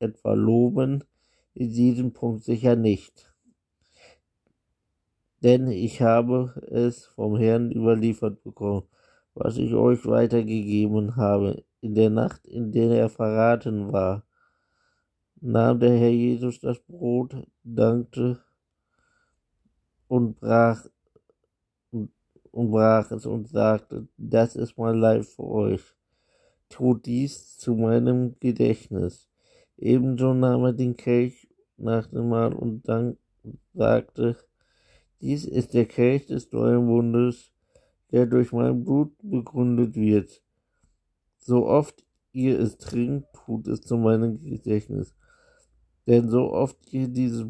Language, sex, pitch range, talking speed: German, male, 110-125 Hz, 115 wpm